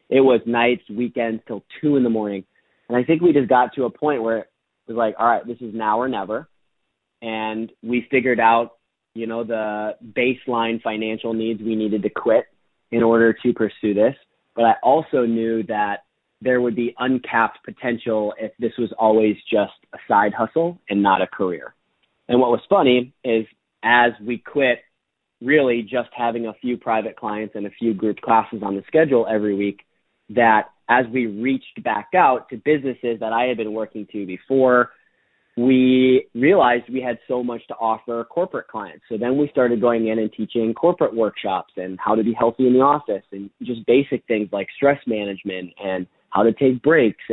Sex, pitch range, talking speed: male, 110-125 Hz, 190 wpm